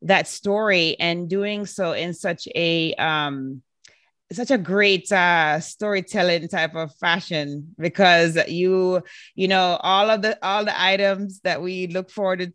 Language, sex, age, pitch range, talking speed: English, female, 20-39, 175-200 Hz, 150 wpm